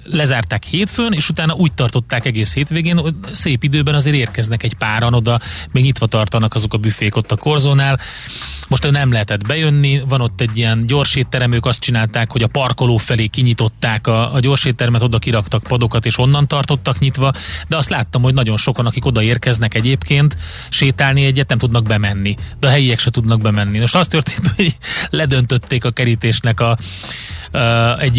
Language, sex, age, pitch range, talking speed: Hungarian, male, 30-49, 115-135 Hz, 175 wpm